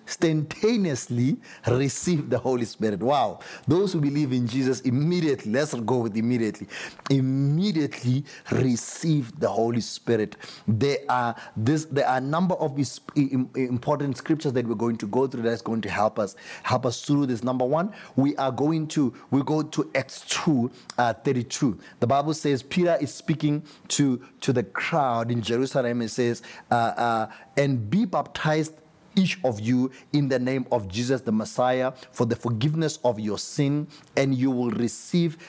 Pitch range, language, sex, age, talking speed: 120-155 Hz, English, male, 30-49, 165 wpm